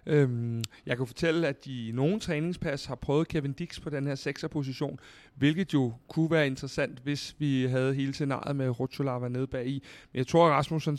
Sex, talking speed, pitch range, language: male, 195 wpm, 125-150 Hz, Danish